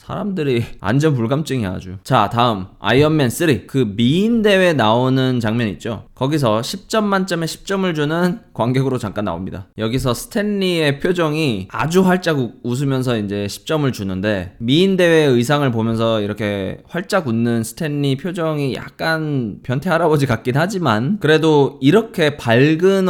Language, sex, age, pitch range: Korean, male, 20-39, 115-160 Hz